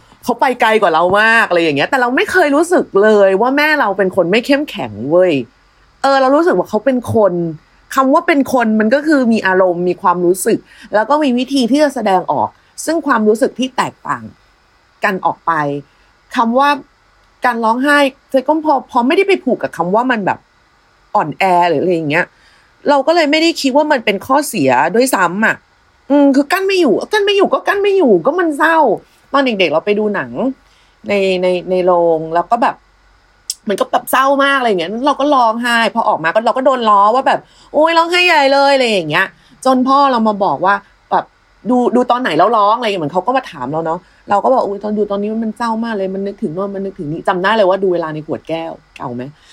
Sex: female